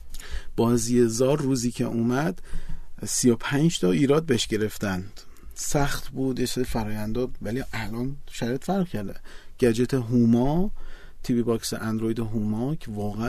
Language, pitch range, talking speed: Persian, 115-150 Hz, 115 wpm